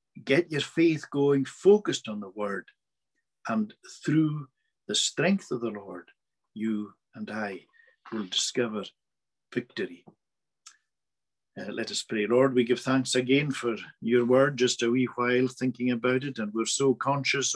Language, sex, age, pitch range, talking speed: English, male, 60-79, 125-155 Hz, 150 wpm